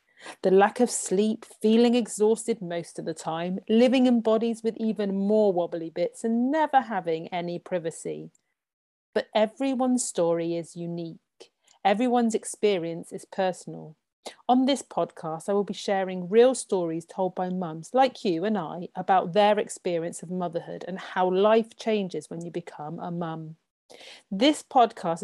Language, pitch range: English, 170-215 Hz